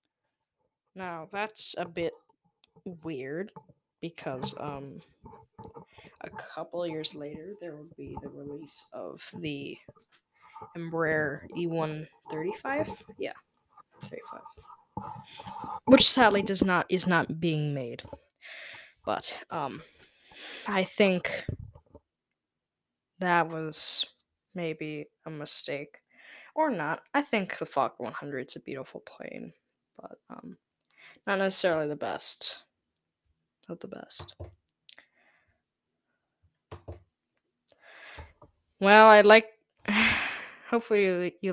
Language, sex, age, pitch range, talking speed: English, female, 10-29, 150-210 Hz, 90 wpm